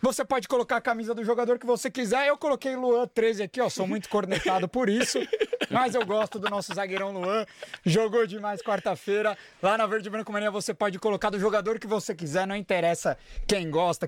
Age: 20-39